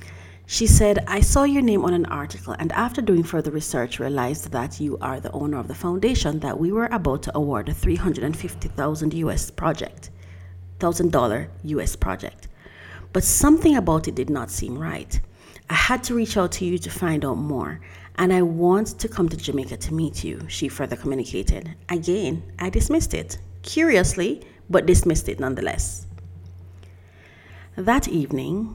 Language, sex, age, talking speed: English, female, 40-59, 160 wpm